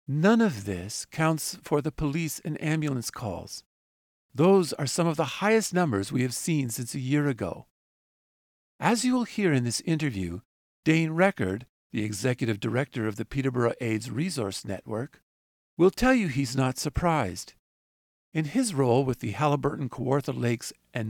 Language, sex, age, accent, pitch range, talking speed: English, male, 50-69, American, 115-175 Hz, 160 wpm